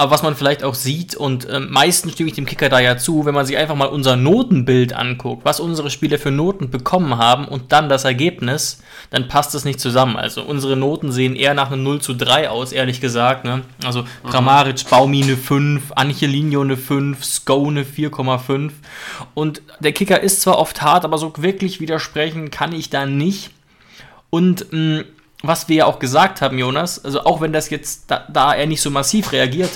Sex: male